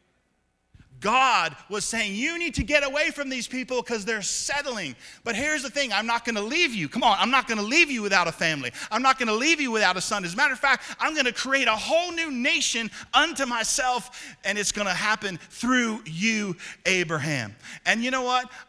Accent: American